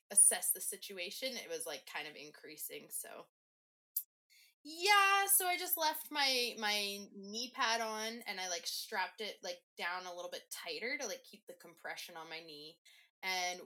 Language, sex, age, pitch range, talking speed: English, female, 20-39, 185-265 Hz, 175 wpm